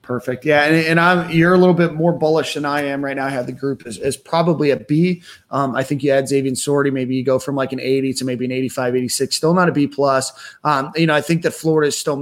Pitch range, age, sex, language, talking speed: 130-145 Hz, 30-49, male, English, 290 wpm